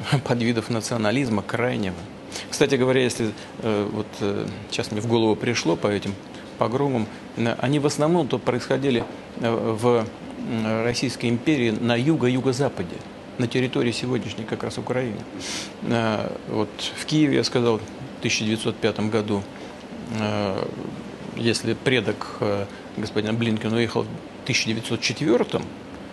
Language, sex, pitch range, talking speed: Russian, male, 110-125 Hz, 105 wpm